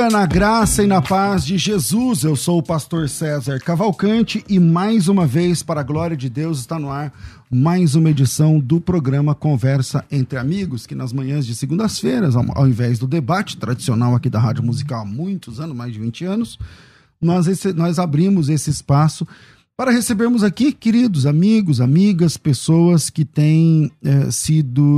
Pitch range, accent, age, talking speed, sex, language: 125-170 Hz, Brazilian, 40-59, 170 wpm, male, Portuguese